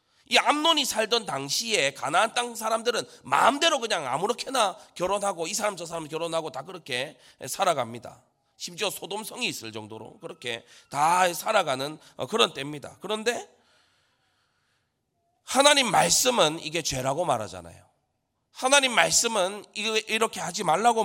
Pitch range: 125-200 Hz